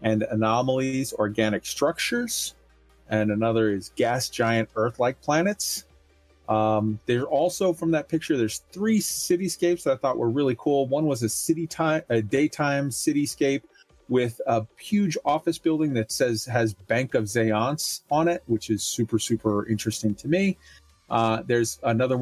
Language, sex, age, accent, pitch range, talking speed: English, male, 30-49, American, 110-160 Hz, 155 wpm